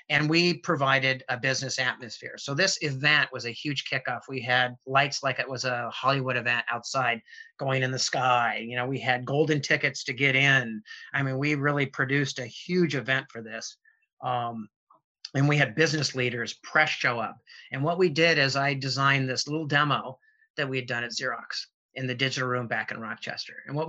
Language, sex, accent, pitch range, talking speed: English, male, American, 125-155 Hz, 200 wpm